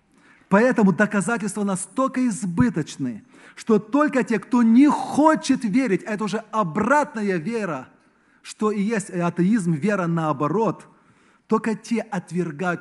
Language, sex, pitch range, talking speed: Russian, male, 155-220 Hz, 110 wpm